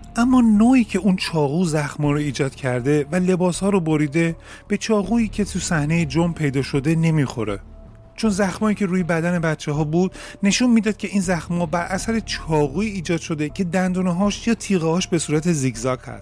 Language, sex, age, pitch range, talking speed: Persian, male, 30-49, 150-200 Hz, 185 wpm